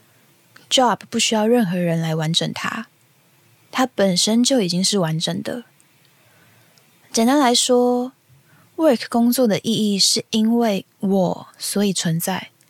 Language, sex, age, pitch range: Chinese, female, 20-39, 175-240 Hz